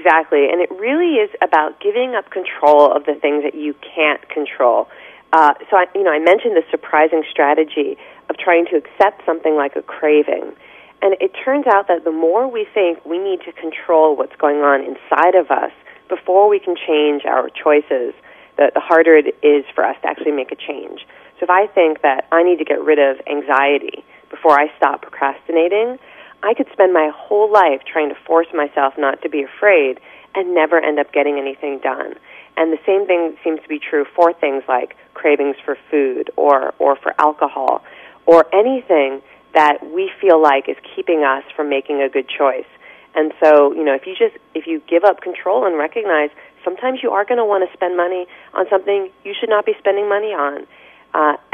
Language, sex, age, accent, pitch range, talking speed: English, female, 30-49, American, 150-205 Hz, 200 wpm